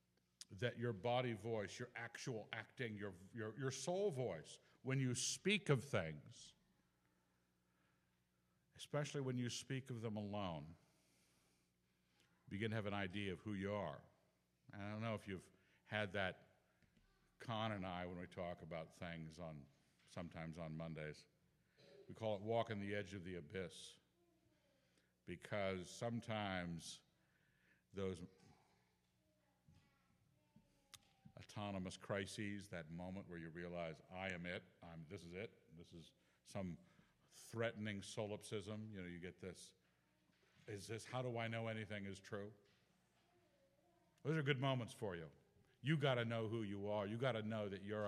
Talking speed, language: 140 wpm, English